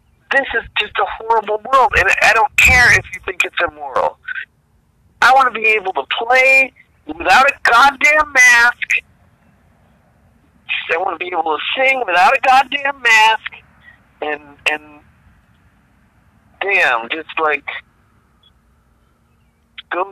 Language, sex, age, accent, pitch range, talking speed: English, male, 50-69, American, 160-220 Hz, 130 wpm